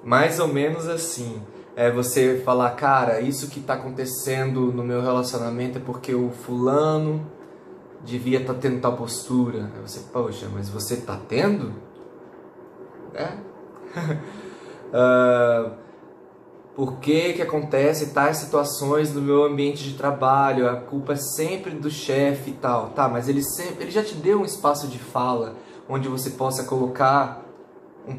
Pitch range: 125-155 Hz